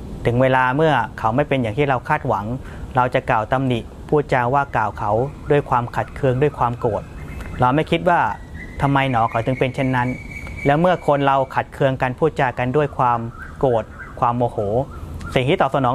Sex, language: male, Thai